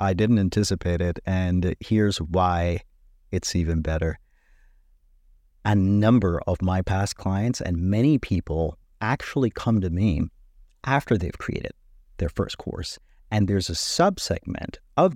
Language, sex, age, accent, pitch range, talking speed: English, male, 40-59, American, 90-115 Hz, 135 wpm